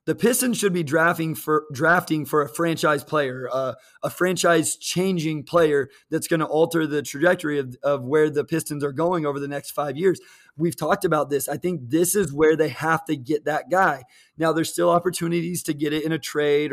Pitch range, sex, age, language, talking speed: 150-180 Hz, male, 20-39, English, 210 wpm